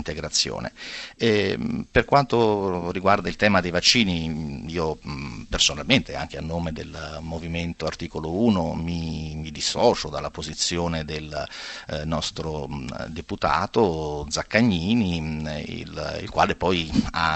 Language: Italian